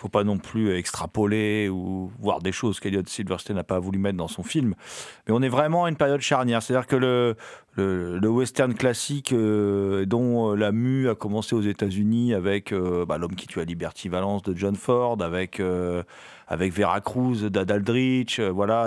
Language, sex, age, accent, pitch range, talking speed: French, male, 40-59, French, 95-135 Hz, 195 wpm